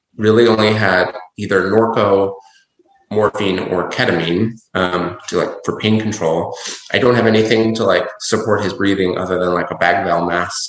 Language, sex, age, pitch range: English, male, 30-49, 90-110 Hz